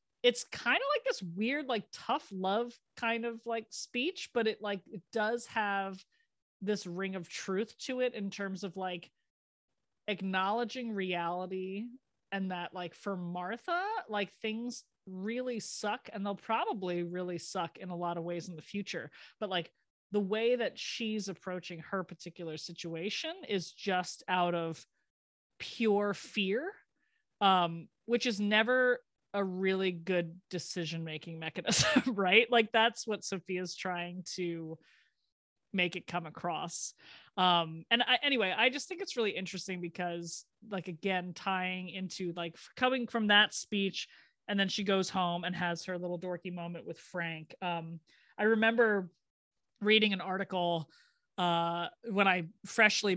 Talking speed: 150 wpm